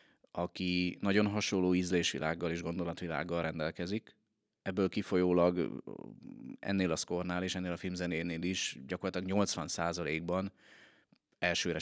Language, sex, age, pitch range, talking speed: Hungarian, male, 30-49, 80-95 Hz, 100 wpm